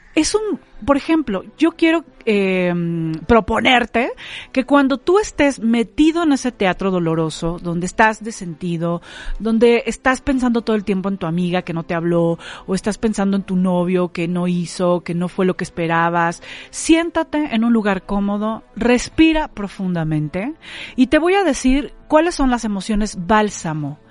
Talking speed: 165 wpm